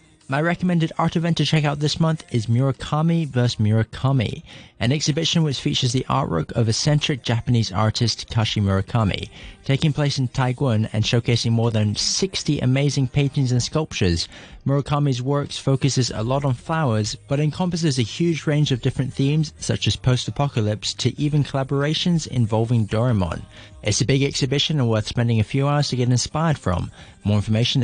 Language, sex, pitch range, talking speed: English, male, 110-145 Hz, 165 wpm